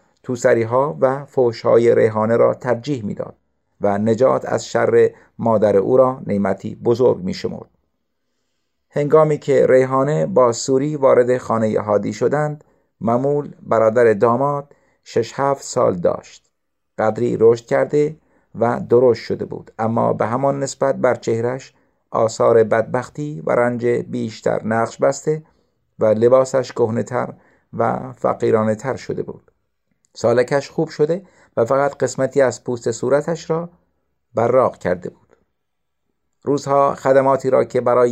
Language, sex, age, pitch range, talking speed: Persian, male, 50-69, 115-150 Hz, 130 wpm